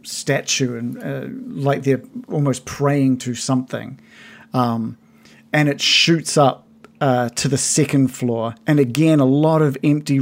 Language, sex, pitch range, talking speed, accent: English, male, 130-155 Hz, 145 wpm, Australian